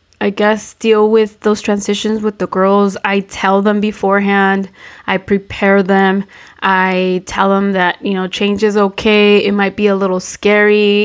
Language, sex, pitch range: English, female, 190-215 Hz